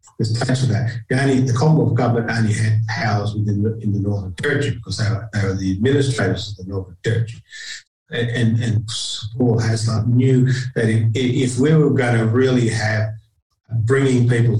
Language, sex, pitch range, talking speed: English, male, 110-130 Hz, 170 wpm